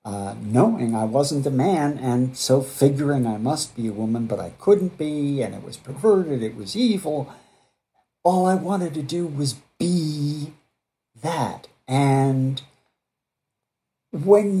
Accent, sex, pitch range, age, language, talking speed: American, male, 120-160 Hz, 50-69, English, 145 wpm